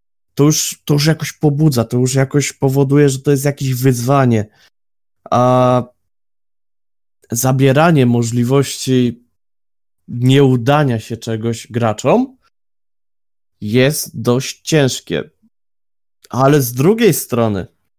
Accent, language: native, Polish